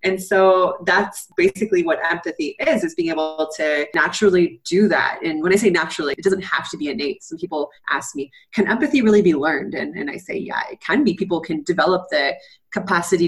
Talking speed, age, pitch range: 210 wpm, 20-39, 155-205 Hz